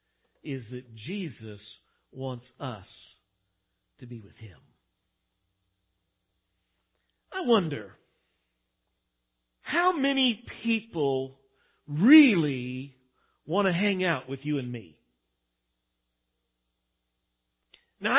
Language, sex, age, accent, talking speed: English, male, 50-69, American, 80 wpm